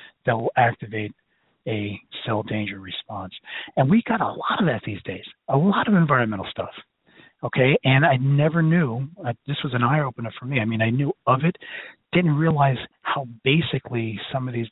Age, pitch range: 40-59, 115-160 Hz